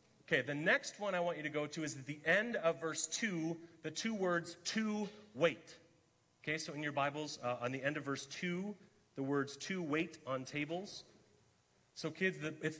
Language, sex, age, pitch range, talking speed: English, male, 30-49, 120-160 Hz, 200 wpm